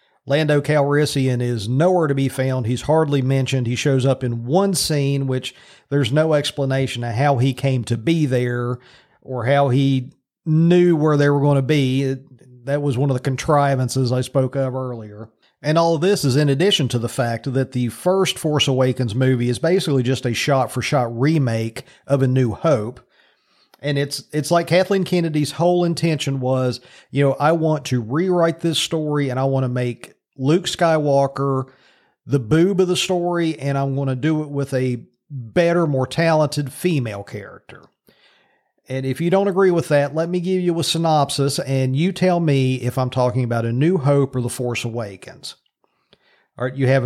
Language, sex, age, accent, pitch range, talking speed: English, male, 40-59, American, 130-155 Hz, 185 wpm